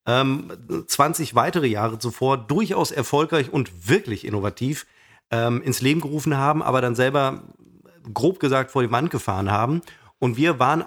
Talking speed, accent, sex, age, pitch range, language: 150 wpm, German, male, 40-59, 120-150 Hz, German